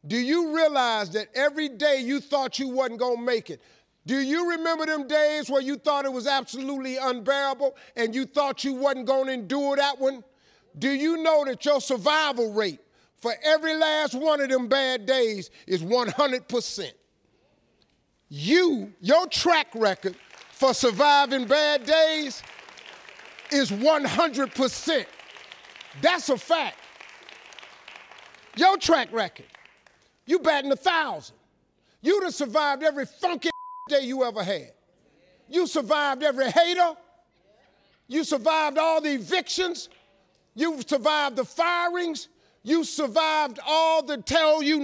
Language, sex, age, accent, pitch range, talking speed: English, male, 50-69, American, 260-320 Hz, 130 wpm